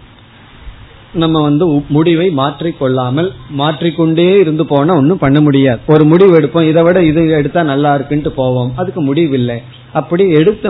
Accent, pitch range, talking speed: native, 125-155 Hz, 125 wpm